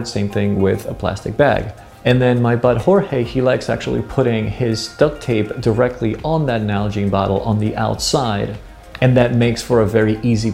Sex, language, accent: male, English, American